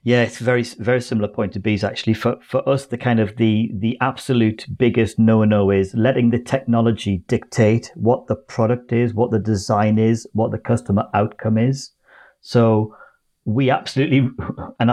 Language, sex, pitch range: English, male, 105-125 Hz